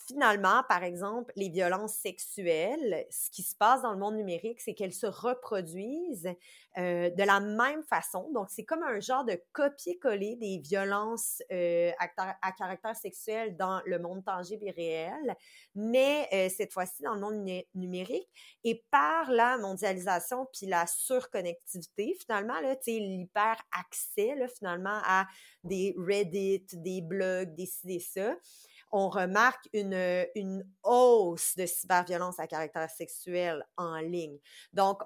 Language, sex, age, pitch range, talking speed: French, female, 30-49, 180-230 Hz, 145 wpm